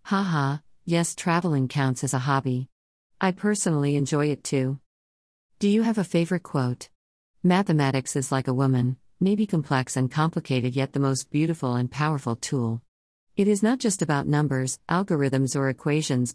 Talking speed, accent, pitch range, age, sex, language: 160 wpm, American, 130-160 Hz, 50-69, female, English